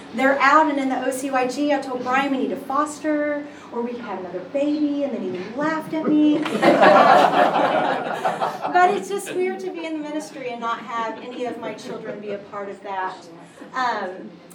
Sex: female